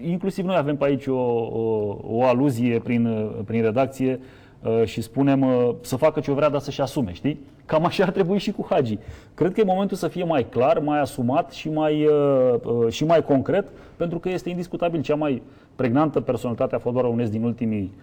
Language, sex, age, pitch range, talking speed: Romanian, male, 30-49, 120-175 Hz, 205 wpm